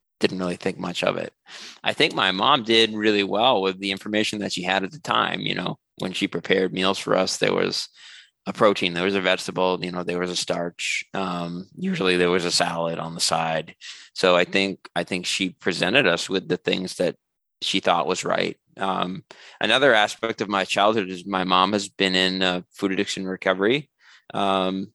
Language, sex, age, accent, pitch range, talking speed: English, male, 20-39, American, 95-105 Hz, 210 wpm